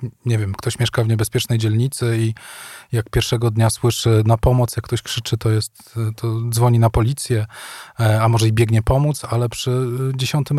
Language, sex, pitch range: Polish, male, 115-150 Hz